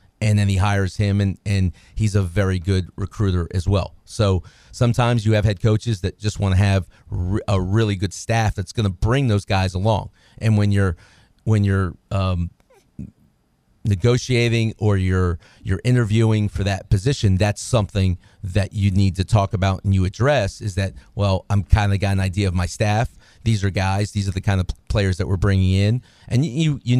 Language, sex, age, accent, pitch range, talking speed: English, male, 40-59, American, 95-110 Hz, 200 wpm